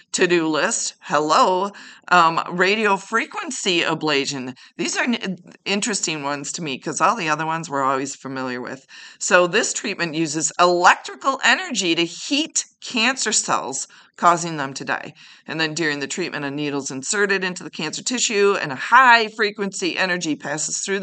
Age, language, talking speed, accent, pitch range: 40-59, English, 155 wpm, American, 145-195 Hz